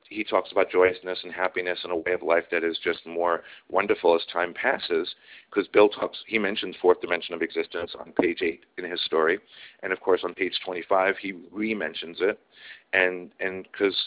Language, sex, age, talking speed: English, male, 40-59, 190 wpm